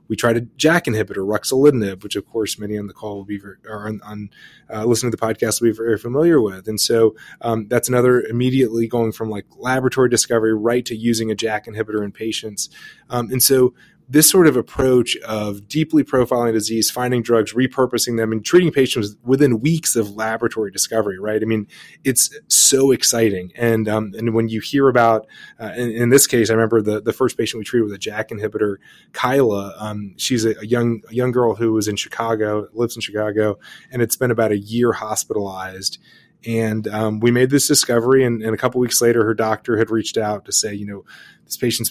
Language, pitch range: English, 110-120 Hz